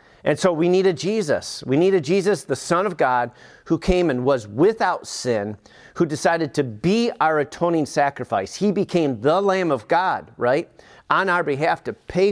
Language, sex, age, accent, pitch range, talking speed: English, male, 40-59, American, 140-190 Hz, 180 wpm